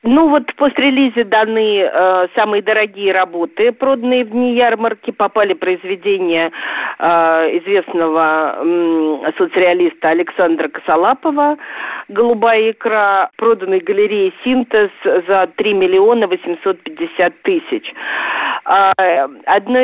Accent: native